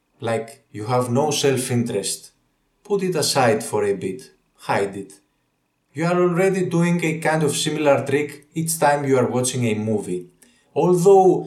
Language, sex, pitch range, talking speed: English, male, 140-185 Hz, 160 wpm